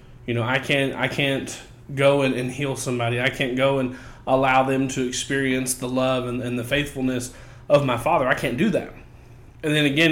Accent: American